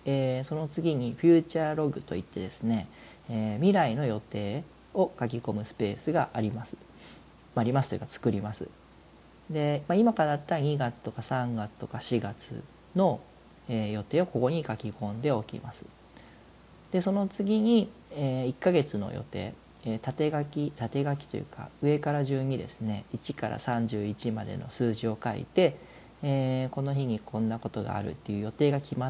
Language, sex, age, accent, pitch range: Japanese, male, 40-59, native, 110-145 Hz